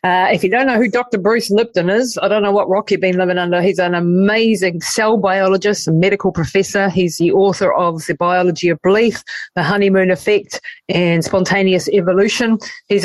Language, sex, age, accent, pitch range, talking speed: English, female, 30-49, Australian, 180-210 Hz, 195 wpm